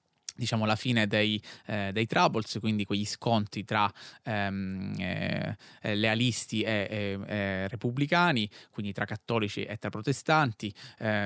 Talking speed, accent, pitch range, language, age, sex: 140 wpm, native, 105-120 Hz, Italian, 20-39, male